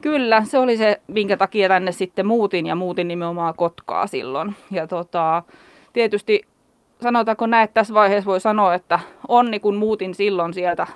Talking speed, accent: 165 wpm, native